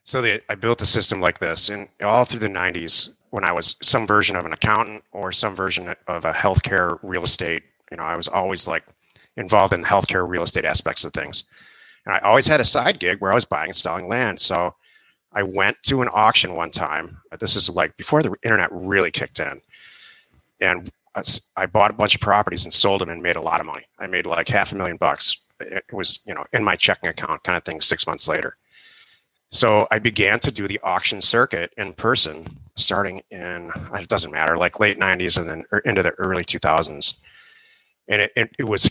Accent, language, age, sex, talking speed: American, English, 30-49, male, 215 wpm